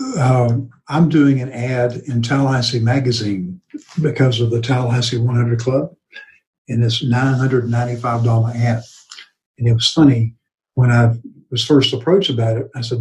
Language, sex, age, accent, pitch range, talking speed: English, male, 60-79, American, 115-135 Hz, 145 wpm